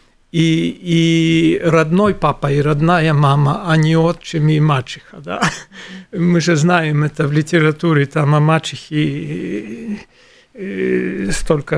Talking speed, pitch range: 115 wpm, 150-190 Hz